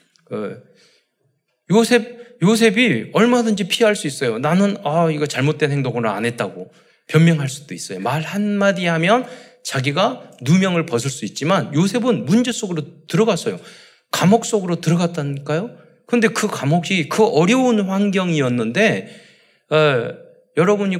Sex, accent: male, native